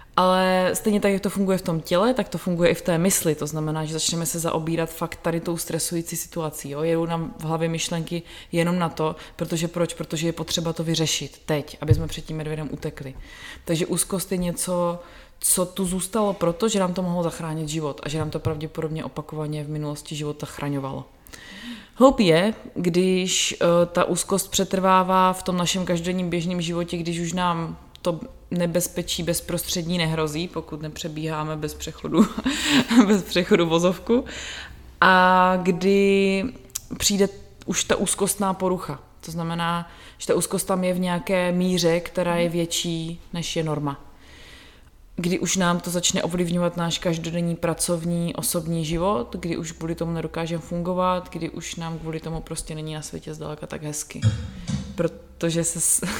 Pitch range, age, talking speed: 160-180 Hz, 20-39, 165 wpm